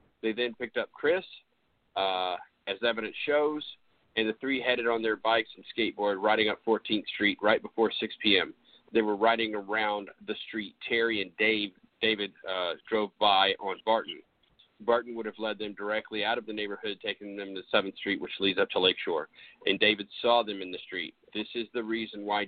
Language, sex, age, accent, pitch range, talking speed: English, male, 40-59, American, 105-120 Hz, 195 wpm